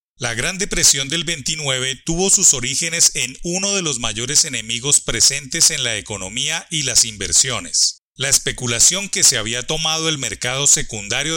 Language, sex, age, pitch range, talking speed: Spanish, male, 30-49, 120-160 Hz, 160 wpm